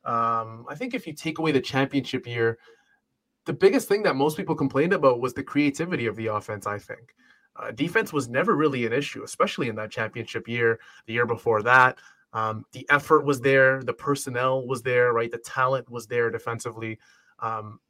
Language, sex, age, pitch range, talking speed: English, male, 20-39, 115-145 Hz, 195 wpm